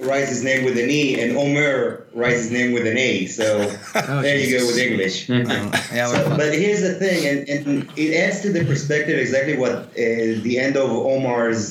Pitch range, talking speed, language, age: 115-150 Hz, 195 wpm, English, 30-49